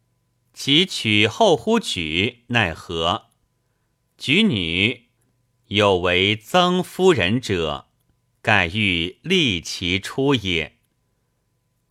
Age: 50-69